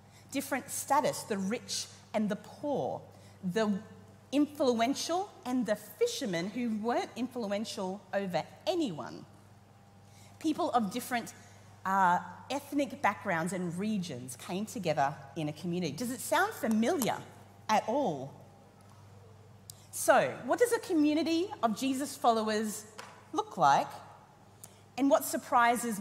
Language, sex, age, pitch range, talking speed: English, female, 40-59, 160-255 Hz, 115 wpm